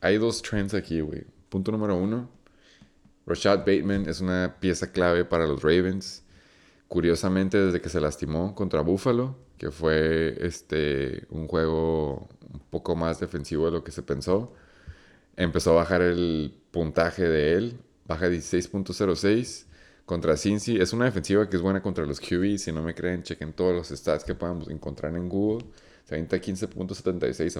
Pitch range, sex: 80-95 Hz, male